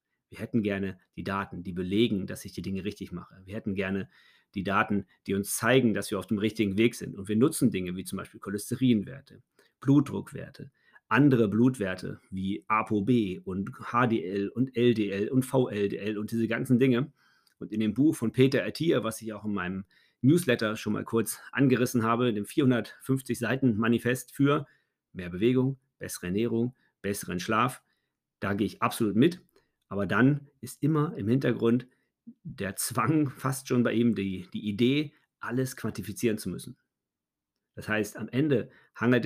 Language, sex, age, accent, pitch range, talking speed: German, male, 40-59, German, 100-125 Hz, 165 wpm